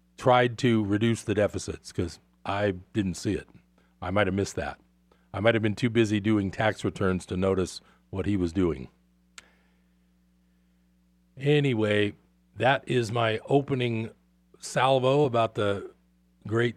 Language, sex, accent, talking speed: English, male, American, 140 wpm